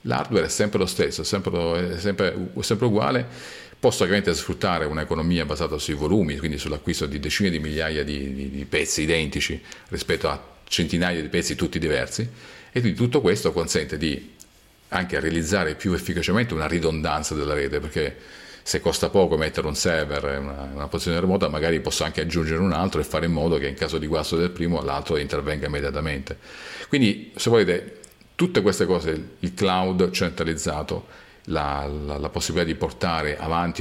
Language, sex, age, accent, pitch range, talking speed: Italian, male, 40-59, native, 75-90 Hz, 170 wpm